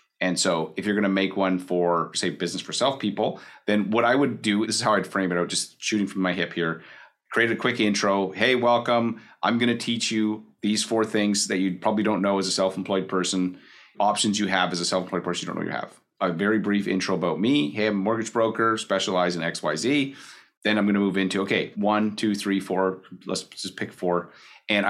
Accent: American